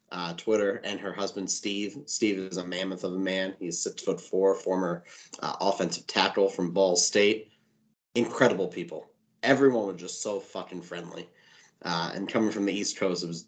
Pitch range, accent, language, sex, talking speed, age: 95-115 Hz, American, English, male, 185 wpm, 30-49